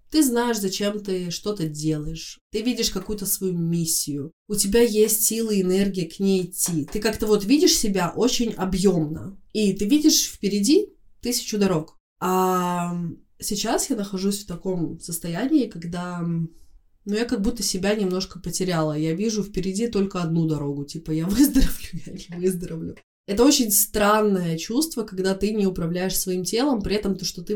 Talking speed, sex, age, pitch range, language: 165 wpm, female, 20-39, 170-215 Hz, Russian